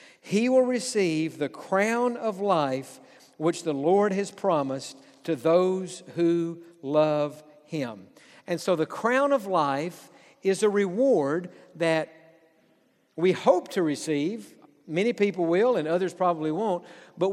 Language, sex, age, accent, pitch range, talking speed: English, male, 60-79, American, 160-205 Hz, 135 wpm